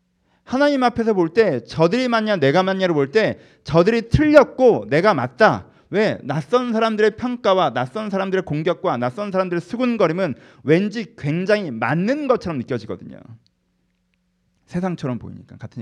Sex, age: male, 40-59